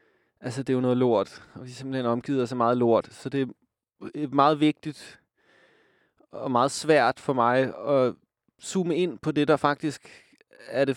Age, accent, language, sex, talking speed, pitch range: 20-39, native, Danish, male, 175 wpm, 125-155 Hz